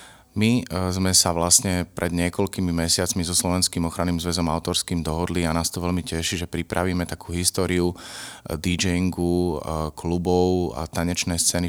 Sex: male